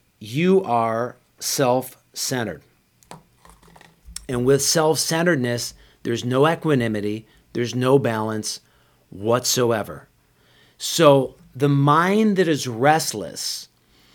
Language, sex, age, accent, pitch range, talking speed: English, male, 40-59, American, 120-170 Hz, 80 wpm